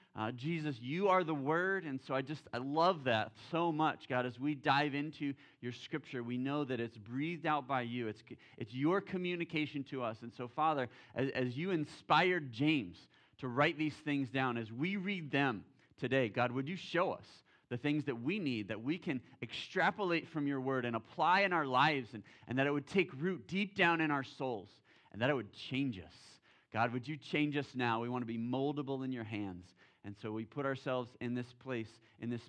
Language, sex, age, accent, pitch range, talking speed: English, male, 30-49, American, 125-165 Hz, 220 wpm